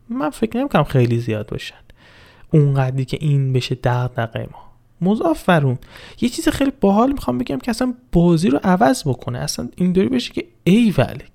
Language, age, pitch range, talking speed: Persian, 20-39, 130-175 Hz, 165 wpm